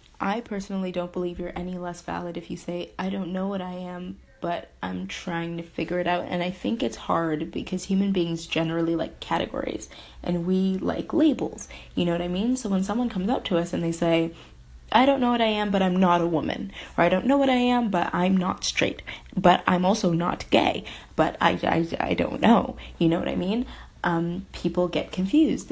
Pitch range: 170-215 Hz